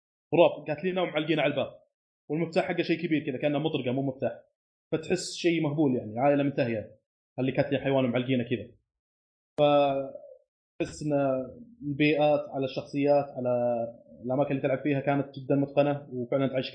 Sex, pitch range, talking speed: male, 140-160 Hz, 145 wpm